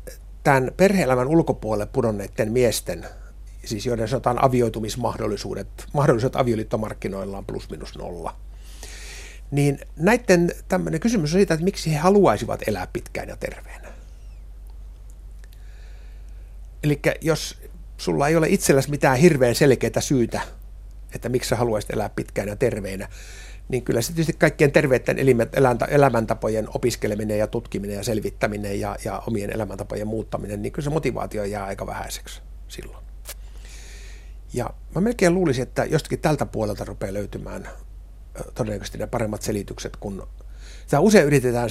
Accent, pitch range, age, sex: native, 105-140 Hz, 60-79, male